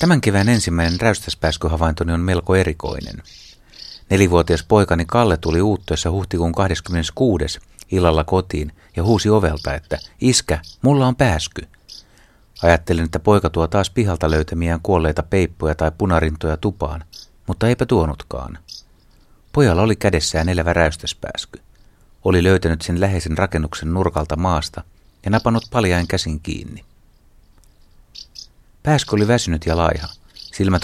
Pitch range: 80-100 Hz